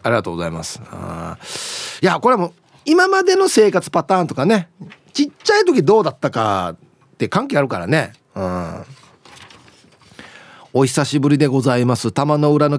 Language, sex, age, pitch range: Japanese, male, 40-59, 130-190 Hz